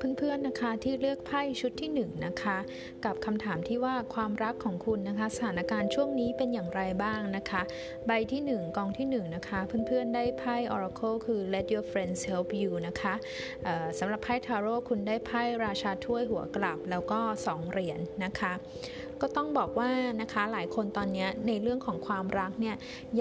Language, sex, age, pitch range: Thai, female, 20-39, 195-245 Hz